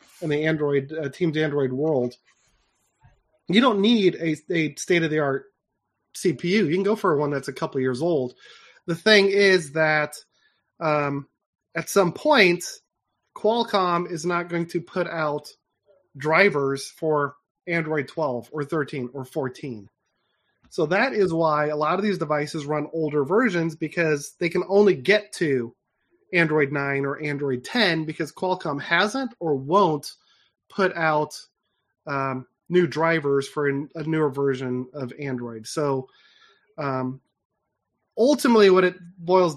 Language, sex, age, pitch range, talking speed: English, male, 30-49, 145-180 Hz, 140 wpm